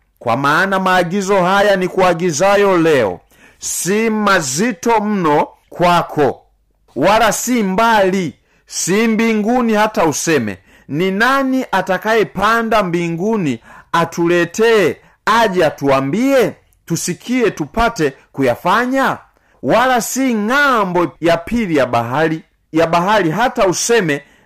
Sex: male